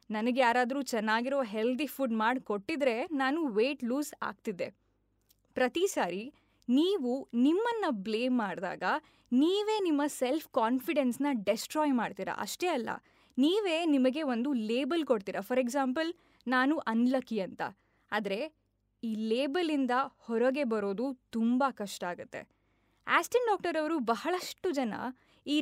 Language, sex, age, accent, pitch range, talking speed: Kannada, female, 20-39, native, 225-315 Hz, 115 wpm